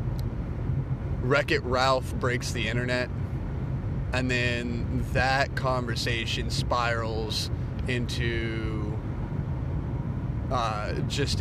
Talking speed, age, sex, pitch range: 70 wpm, 30-49, male, 115-130 Hz